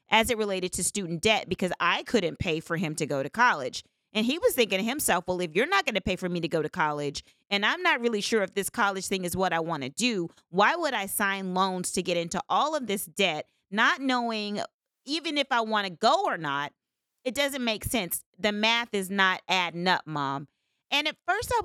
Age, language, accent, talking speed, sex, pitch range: 30-49, English, American, 240 wpm, female, 180-230 Hz